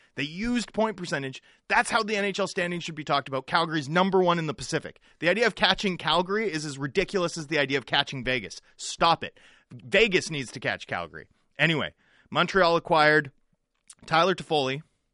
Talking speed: 180 wpm